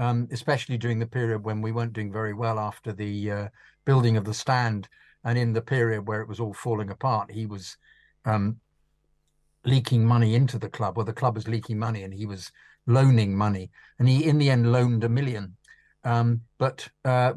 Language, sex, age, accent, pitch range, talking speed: English, male, 50-69, British, 105-125 Hz, 200 wpm